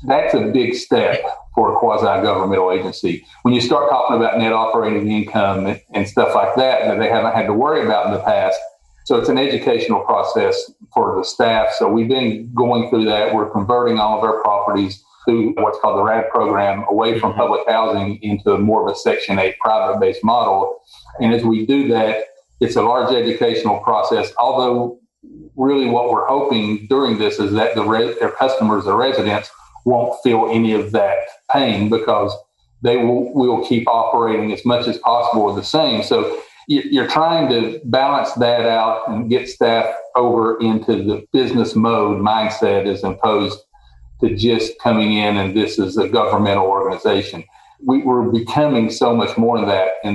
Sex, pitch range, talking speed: male, 110-125 Hz, 175 wpm